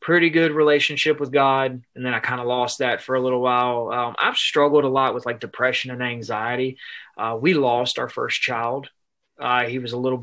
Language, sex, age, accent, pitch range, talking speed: English, male, 20-39, American, 120-140 Hz, 215 wpm